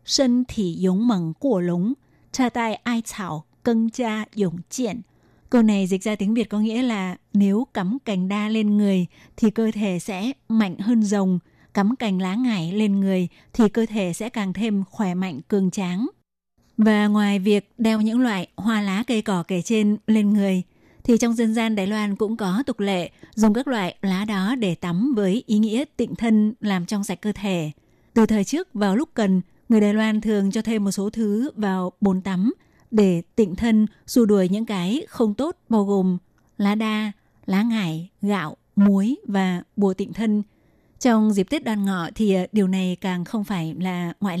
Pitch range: 190-225 Hz